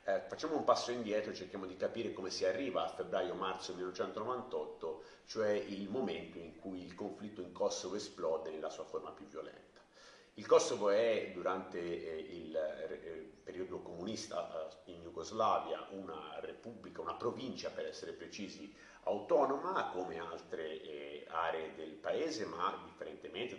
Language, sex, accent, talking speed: Italian, male, native, 135 wpm